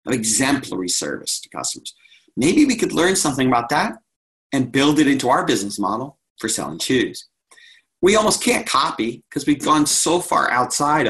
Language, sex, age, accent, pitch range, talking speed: English, male, 40-59, American, 130-180 Hz, 175 wpm